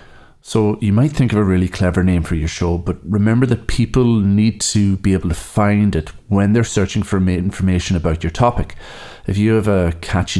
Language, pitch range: English, 85-105 Hz